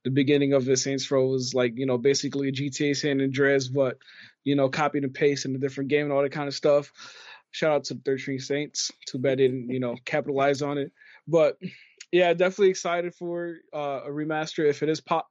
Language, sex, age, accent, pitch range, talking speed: English, male, 20-39, American, 130-160 Hz, 220 wpm